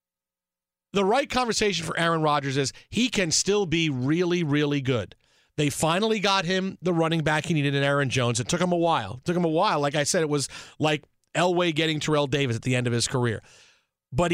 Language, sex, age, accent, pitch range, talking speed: English, male, 40-59, American, 140-170 Hz, 220 wpm